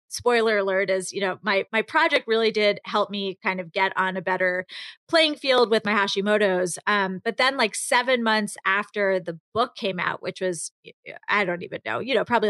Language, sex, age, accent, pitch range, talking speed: English, female, 30-49, American, 195-245 Hz, 205 wpm